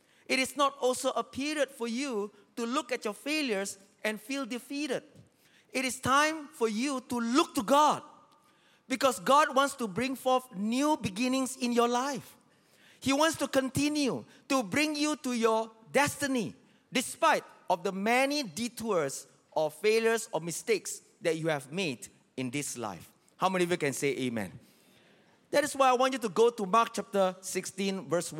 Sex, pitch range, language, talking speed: male, 195-275 Hz, English, 175 wpm